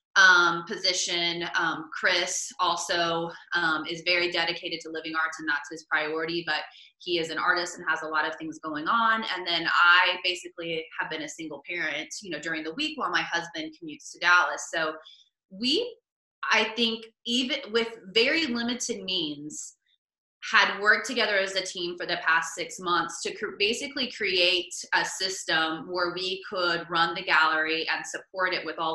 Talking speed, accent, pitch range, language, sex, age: 175 wpm, American, 165-210 Hz, English, female, 20-39